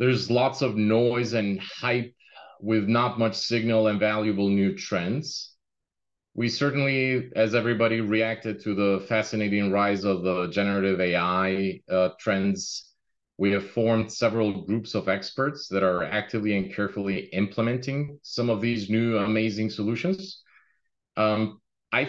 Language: English